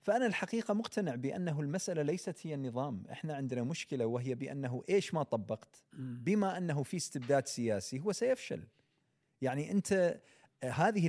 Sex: male